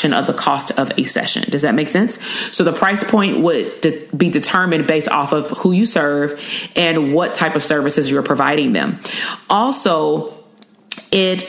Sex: female